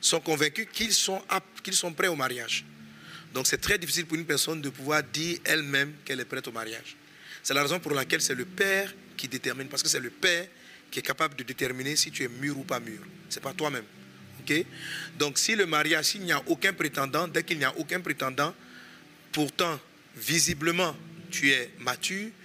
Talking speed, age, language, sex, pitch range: 200 wpm, 40-59, French, male, 130-175 Hz